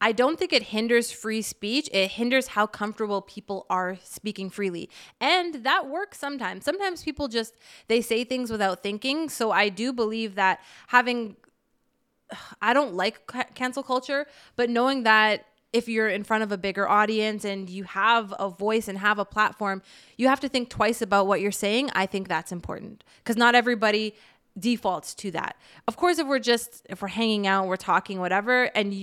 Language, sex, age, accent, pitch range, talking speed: English, female, 20-39, American, 200-255 Hz, 185 wpm